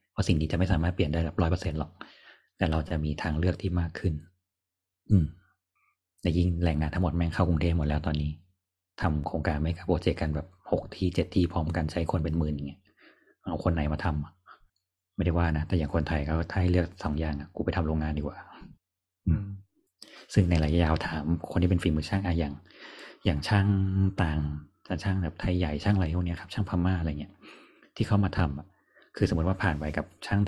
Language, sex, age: Thai, male, 30-49